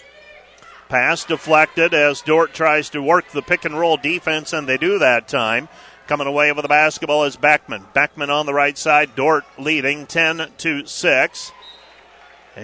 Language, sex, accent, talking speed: English, male, American, 140 wpm